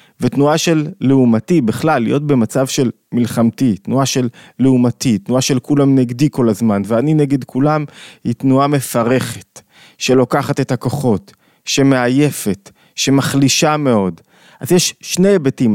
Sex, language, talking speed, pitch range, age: male, Hebrew, 125 wpm, 120-145 Hz, 20-39